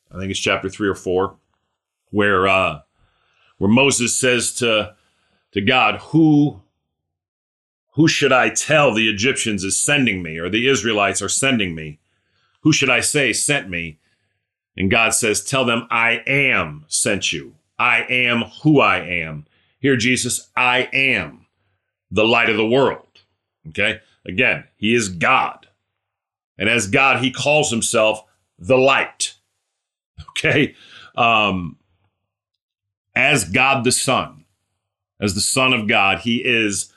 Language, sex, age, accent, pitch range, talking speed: English, male, 40-59, American, 95-125 Hz, 140 wpm